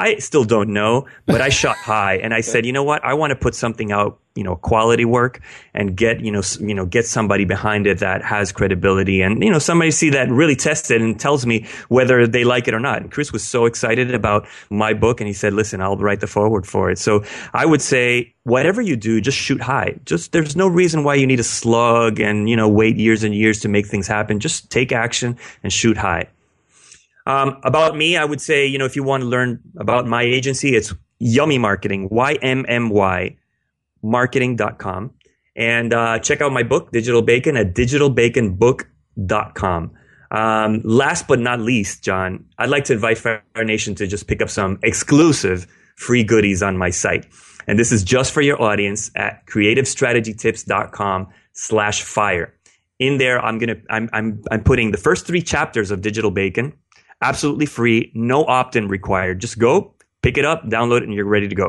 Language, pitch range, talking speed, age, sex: English, 105-125 Hz, 200 wpm, 30-49, male